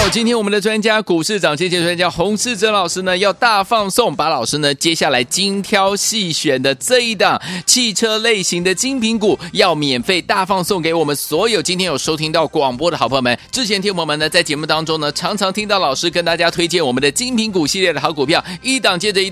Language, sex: Chinese, male